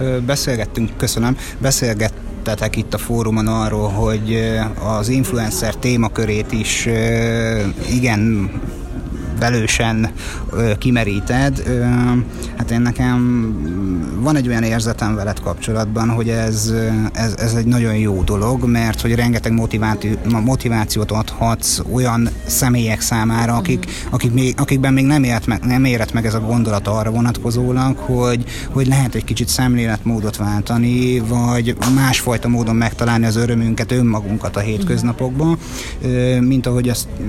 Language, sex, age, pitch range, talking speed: Hungarian, male, 30-49, 110-120 Hz, 125 wpm